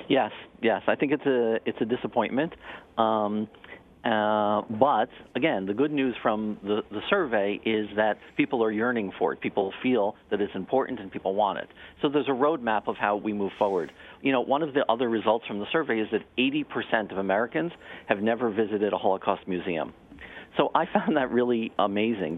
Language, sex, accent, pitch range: English, male, American, 100-120 Hz